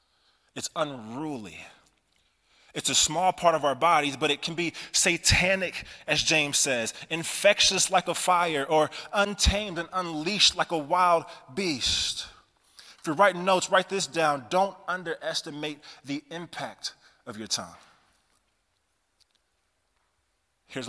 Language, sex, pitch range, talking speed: English, male, 130-185 Hz, 125 wpm